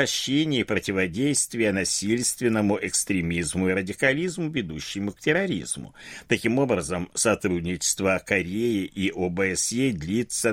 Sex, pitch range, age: male, 95-140 Hz, 60-79